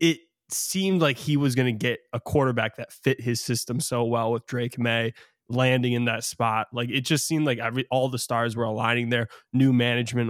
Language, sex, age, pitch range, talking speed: English, male, 20-39, 115-135 Hz, 215 wpm